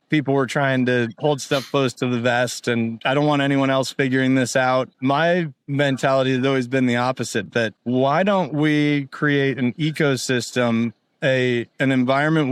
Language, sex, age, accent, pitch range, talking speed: English, male, 20-39, American, 125-145 Hz, 175 wpm